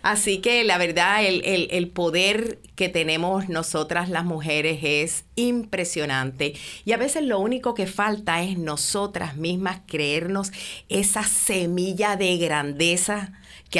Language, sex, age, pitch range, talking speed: Spanish, female, 50-69, 155-195 Hz, 130 wpm